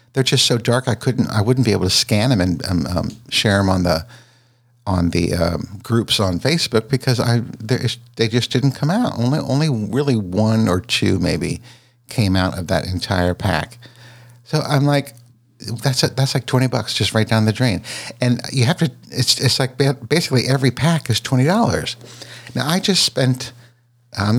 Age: 60-79